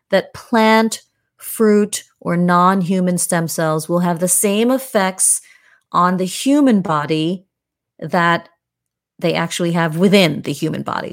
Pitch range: 170-215 Hz